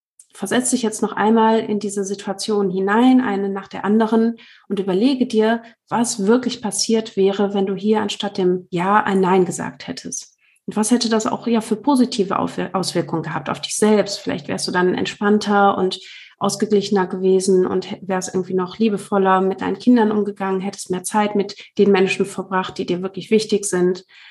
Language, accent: German, German